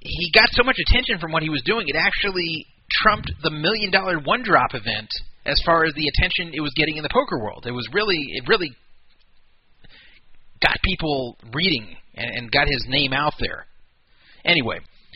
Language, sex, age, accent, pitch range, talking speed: English, male, 30-49, American, 125-175 Hz, 180 wpm